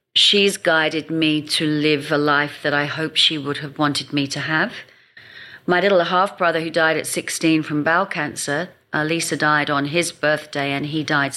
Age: 40-59